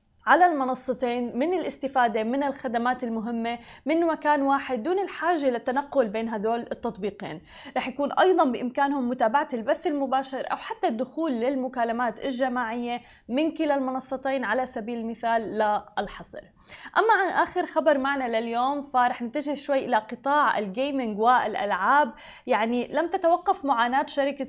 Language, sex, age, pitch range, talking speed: Arabic, female, 20-39, 235-285 Hz, 130 wpm